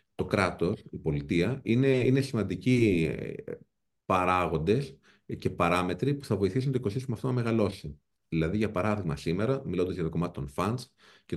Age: 40-59